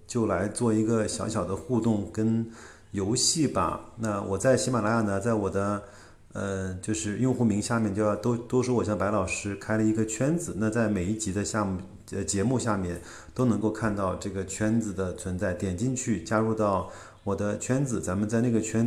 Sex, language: male, Chinese